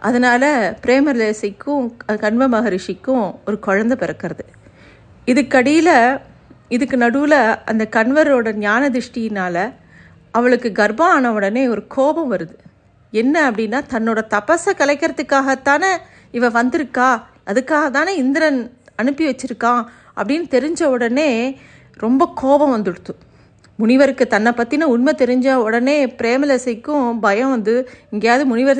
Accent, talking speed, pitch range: native, 105 wpm, 220-280 Hz